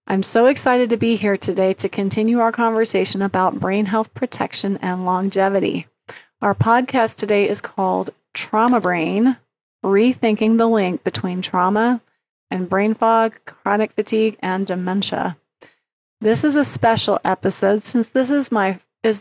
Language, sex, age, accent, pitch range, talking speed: English, female, 30-49, American, 190-230 Hz, 145 wpm